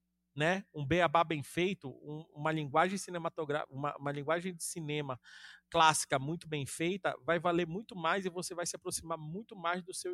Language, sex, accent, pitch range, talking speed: Portuguese, male, Brazilian, 145-185 Hz, 185 wpm